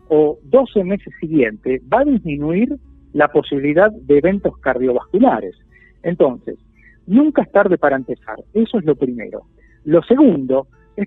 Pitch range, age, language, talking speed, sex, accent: 145-210 Hz, 50-69, Spanish, 135 wpm, male, Argentinian